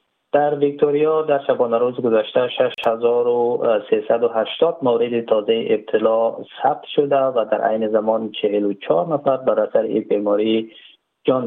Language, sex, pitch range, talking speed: Persian, male, 110-155 Hz, 120 wpm